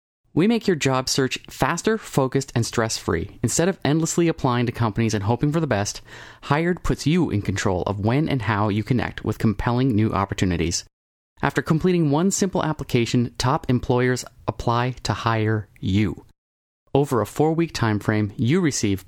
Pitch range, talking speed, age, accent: 105-145 Hz, 165 wpm, 30-49, American